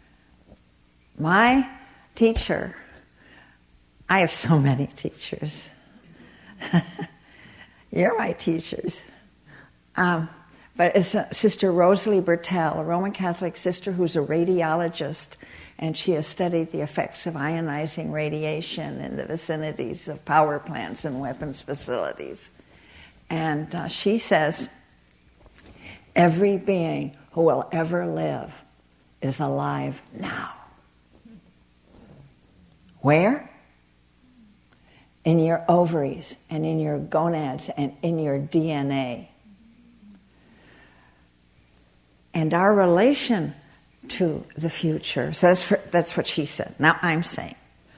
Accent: American